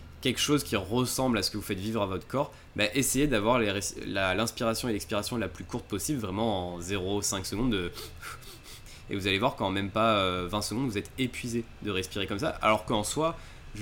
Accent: French